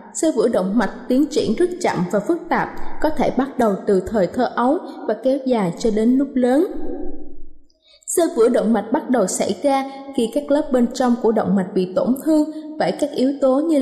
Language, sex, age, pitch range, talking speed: Vietnamese, female, 20-39, 220-300 Hz, 215 wpm